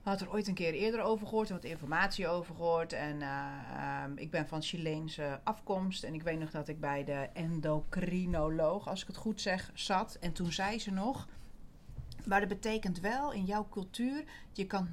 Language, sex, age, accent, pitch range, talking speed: Dutch, female, 30-49, Dutch, 165-200 Hz, 200 wpm